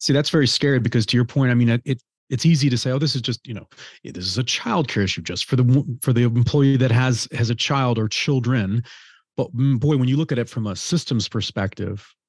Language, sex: English, male